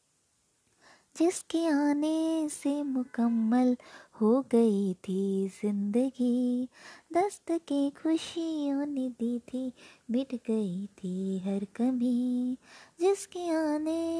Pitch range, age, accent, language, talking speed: 230-315 Hz, 20-39, native, Hindi, 90 wpm